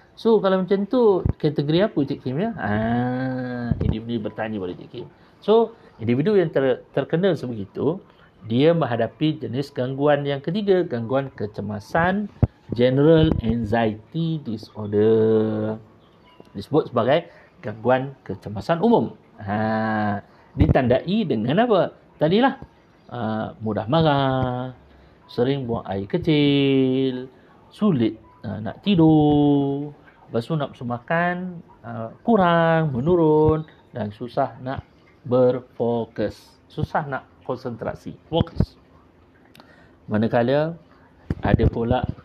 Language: Malay